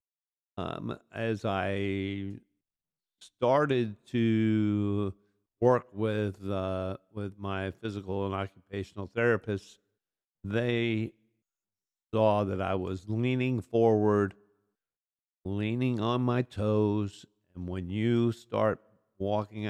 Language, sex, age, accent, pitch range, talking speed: English, male, 50-69, American, 95-110 Hz, 90 wpm